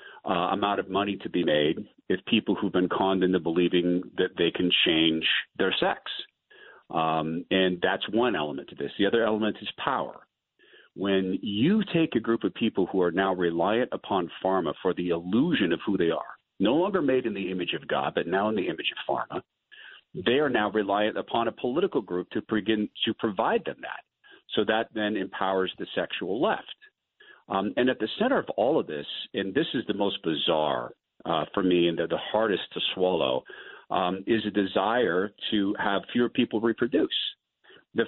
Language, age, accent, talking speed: English, 50-69, American, 190 wpm